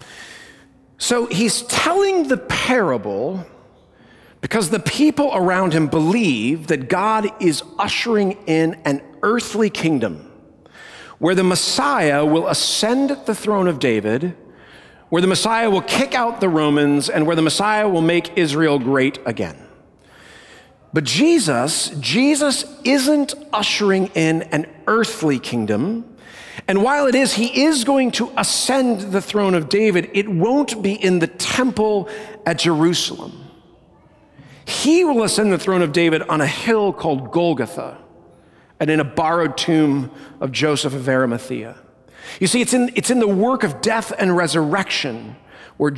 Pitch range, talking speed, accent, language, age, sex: 160-230 Hz, 140 wpm, American, English, 50-69, male